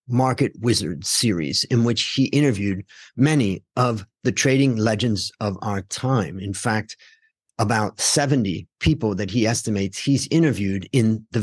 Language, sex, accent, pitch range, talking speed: English, male, American, 110-145 Hz, 140 wpm